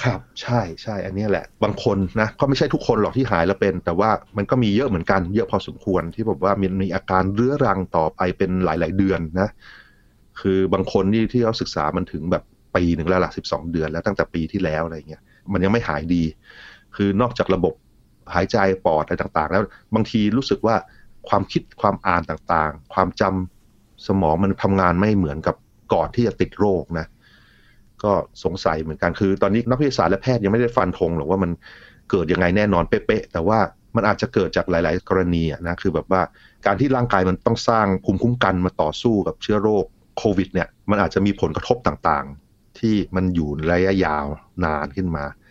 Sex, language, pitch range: male, Thai, 85-105 Hz